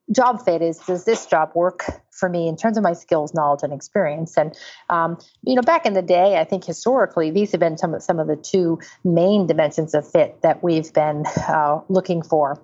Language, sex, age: English, female, 40-59